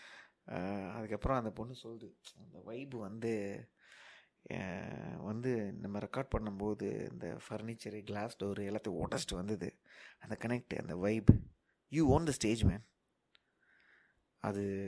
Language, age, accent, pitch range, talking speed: Tamil, 20-39, native, 105-125 Hz, 115 wpm